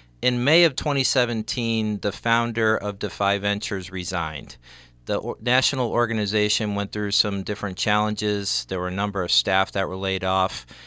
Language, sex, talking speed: English, male, 155 wpm